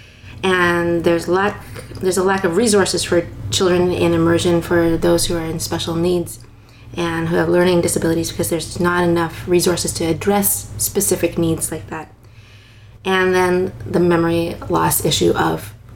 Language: English